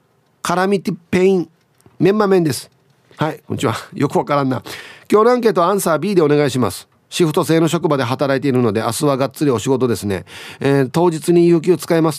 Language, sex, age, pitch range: Japanese, male, 40-59, 125-175 Hz